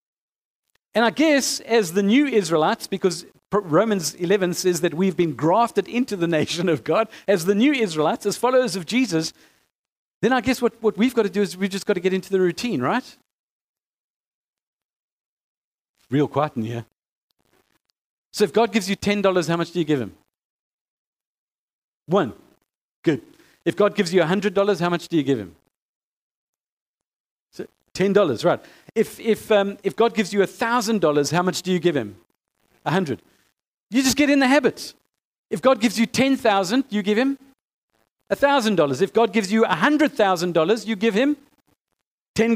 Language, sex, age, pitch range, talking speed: English, male, 40-59, 175-240 Hz, 175 wpm